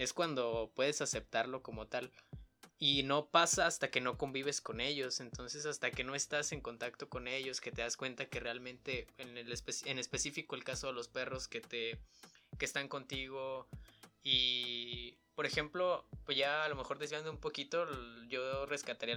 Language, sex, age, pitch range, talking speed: Spanish, male, 20-39, 120-145 Hz, 180 wpm